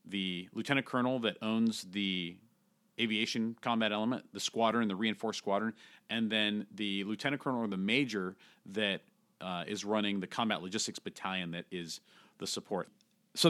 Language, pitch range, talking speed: English, 100-130 Hz, 155 wpm